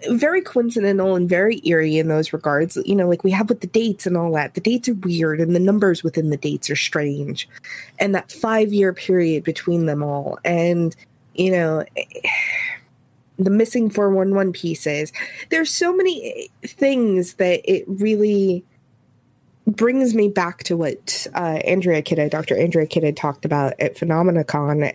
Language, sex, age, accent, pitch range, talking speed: English, female, 20-39, American, 150-195 Hz, 160 wpm